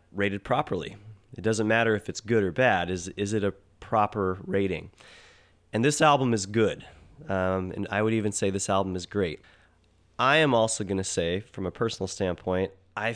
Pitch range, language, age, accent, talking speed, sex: 95-115 Hz, English, 30-49, American, 190 wpm, male